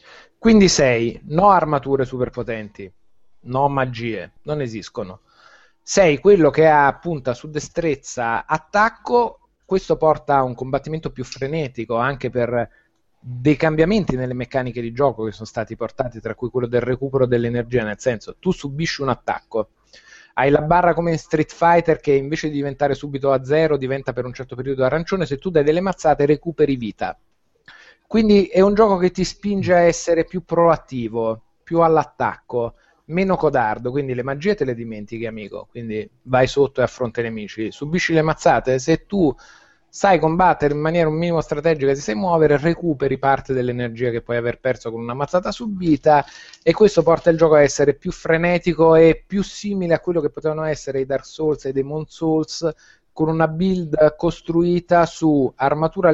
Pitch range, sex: 125-165 Hz, male